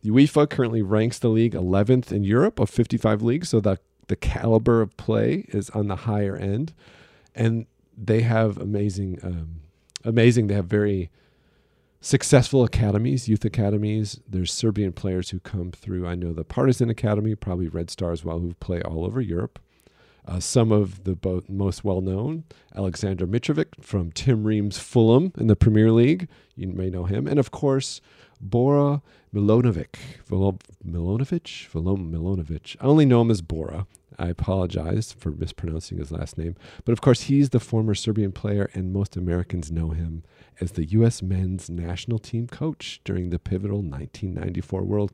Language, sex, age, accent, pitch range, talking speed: English, male, 40-59, American, 90-120 Hz, 160 wpm